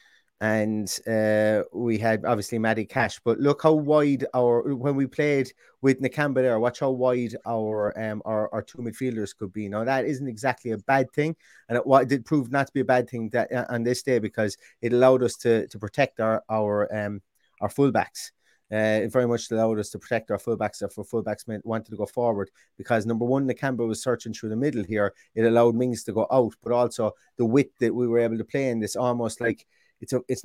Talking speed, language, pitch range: 225 wpm, English, 110-130 Hz